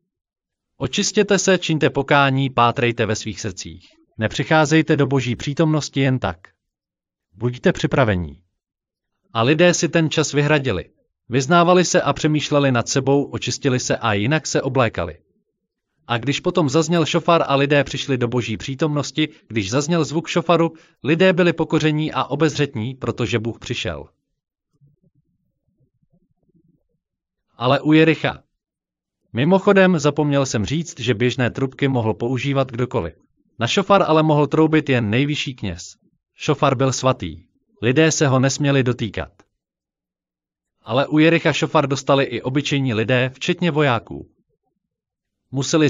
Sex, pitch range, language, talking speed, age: male, 120-160 Hz, Slovak, 125 wpm, 40-59